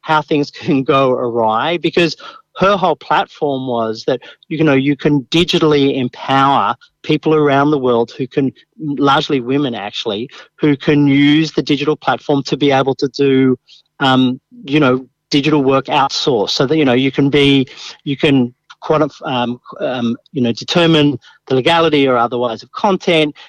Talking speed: 165 wpm